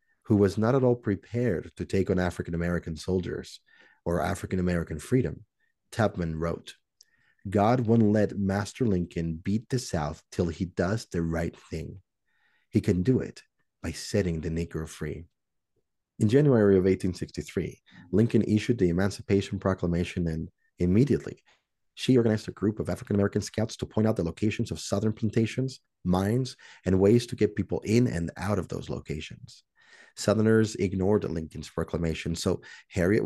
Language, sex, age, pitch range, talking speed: English, male, 40-59, 90-115 Hz, 150 wpm